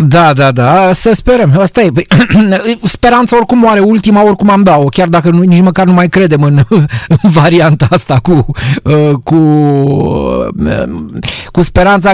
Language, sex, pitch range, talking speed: Romanian, male, 155-205 Hz, 145 wpm